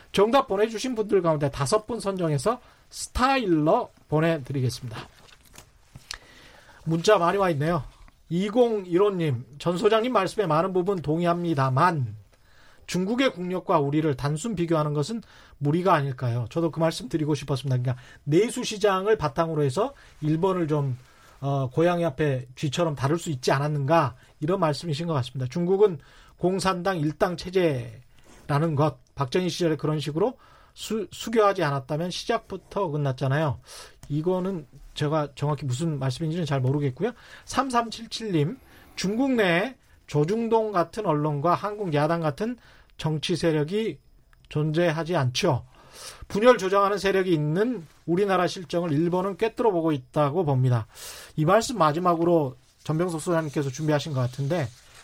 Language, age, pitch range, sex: Korean, 40-59, 140-190 Hz, male